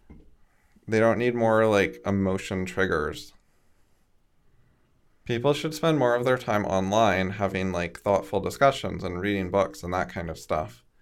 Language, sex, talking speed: English, male, 145 wpm